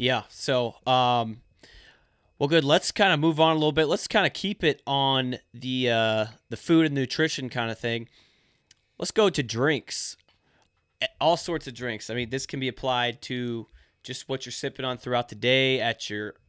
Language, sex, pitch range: English, male, 110-135 Hz